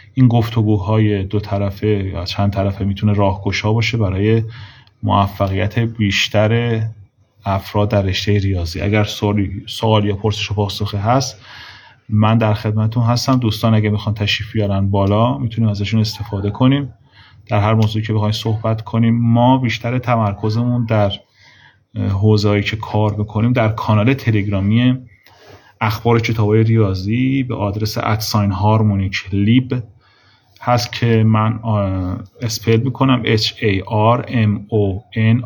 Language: Persian